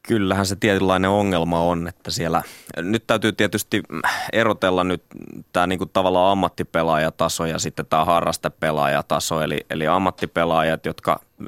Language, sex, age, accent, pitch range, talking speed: Finnish, male, 20-39, native, 80-90 Hz, 125 wpm